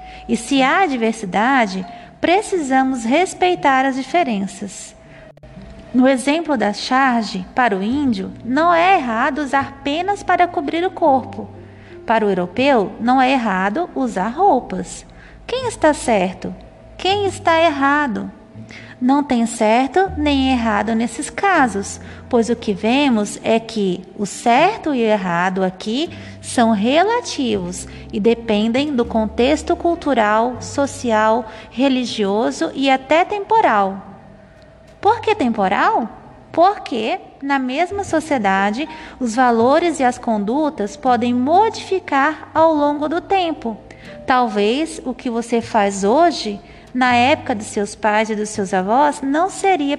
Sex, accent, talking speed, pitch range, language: female, Brazilian, 125 wpm, 215-305 Hz, Portuguese